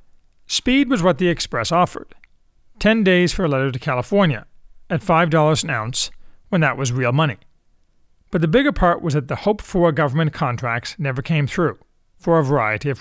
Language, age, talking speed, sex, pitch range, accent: English, 40-59, 185 wpm, male, 140-185 Hz, American